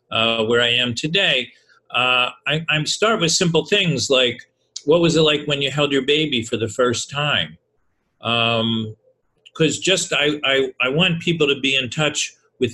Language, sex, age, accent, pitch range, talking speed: English, male, 40-59, American, 115-145 Hz, 185 wpm